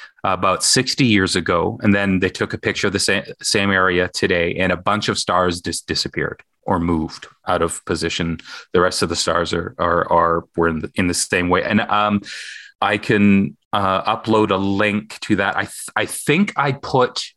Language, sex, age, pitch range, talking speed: English, male, 30-49, 95-115 Hz, 205 wpm